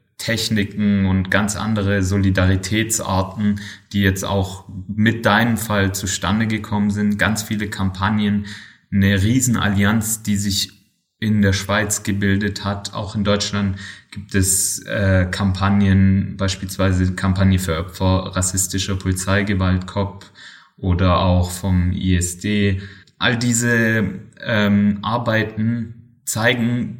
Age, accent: 20-39, German